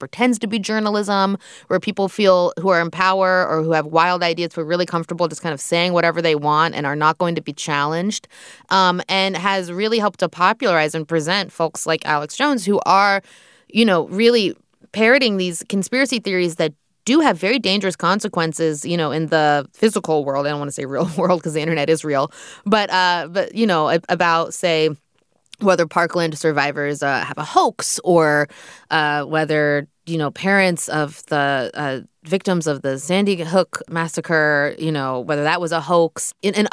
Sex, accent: female, American